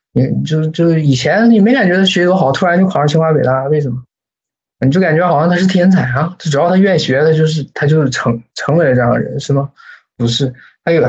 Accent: native